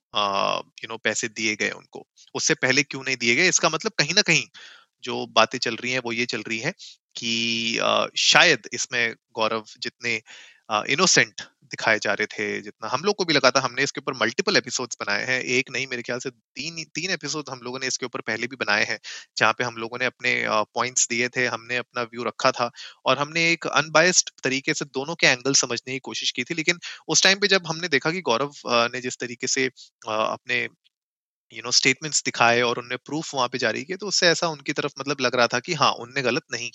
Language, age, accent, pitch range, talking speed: Hindi, 30-49, native, 120-160 Hz, 210 wpm